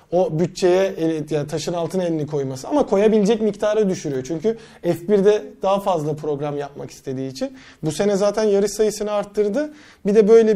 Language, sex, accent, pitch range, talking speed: Turkish, male, native, 170-210 Hz, 155 wpm